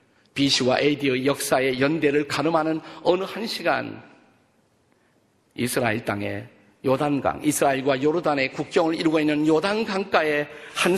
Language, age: Korean, 50-69